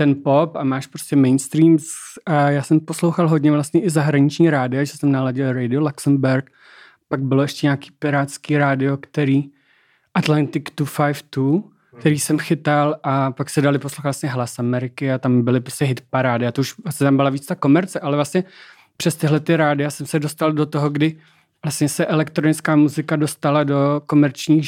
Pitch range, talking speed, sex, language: 135-155 Hz, 180 wpm, male, Czech